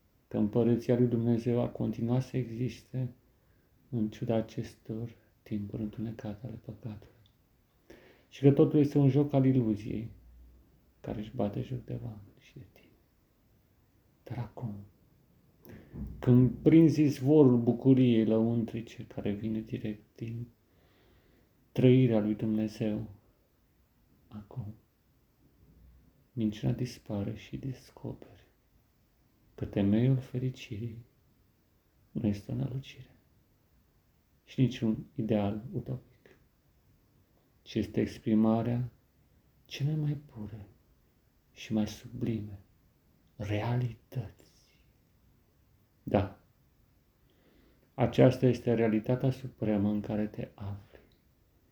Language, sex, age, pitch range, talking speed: Romanian, male, 40-59, 105-125 Hz, 95 wpm